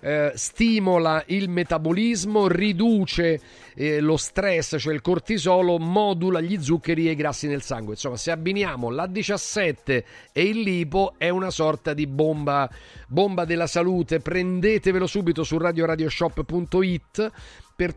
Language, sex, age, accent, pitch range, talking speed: Italian, male, 40-59, native, 155-195 Hz, 125 wpm